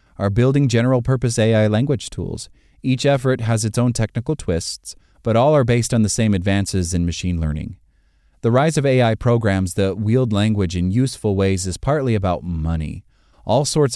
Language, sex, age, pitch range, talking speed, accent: English, male, 30-49, 90-125 Hz, 175 wpm, American